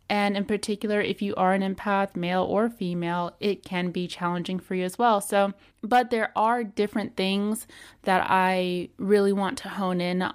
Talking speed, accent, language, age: 185 wpm, American, English, 20-39